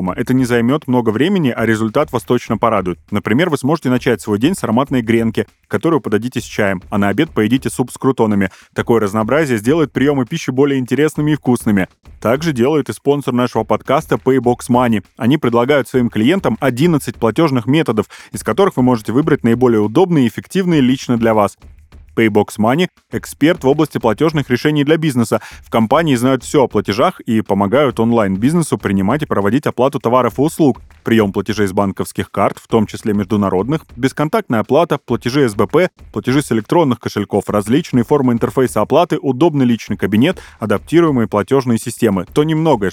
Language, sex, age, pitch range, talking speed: Russian, male, 30-49, 105-135 Hz, 170 wpm